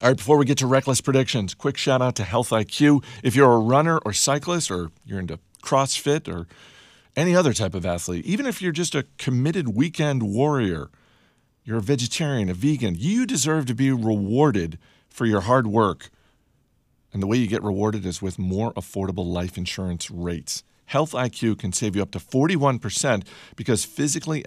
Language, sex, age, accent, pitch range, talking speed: English, male, 50-69, American, 95-135 Hz, 185 wpm